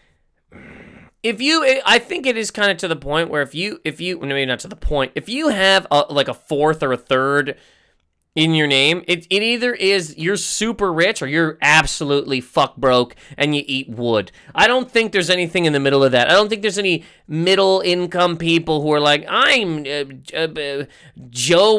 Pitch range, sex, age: 140-195 Hz, male, 20-39